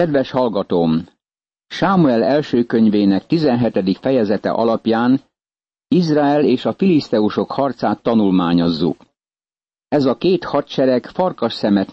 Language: Hungarian